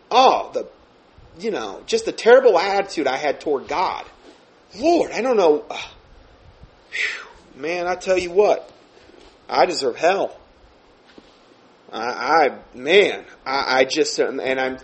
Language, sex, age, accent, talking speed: English, male, 30-49, American, 130 wpm